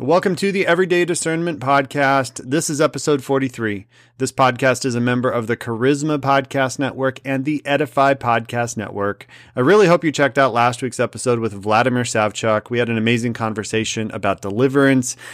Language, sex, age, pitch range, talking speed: English, male, 30-49, 115-140 Hz, 170 wpm